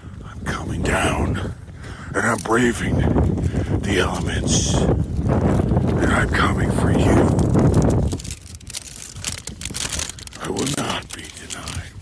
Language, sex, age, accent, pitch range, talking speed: English, male, 60-79, American, 85-105 Hz, 80 wpm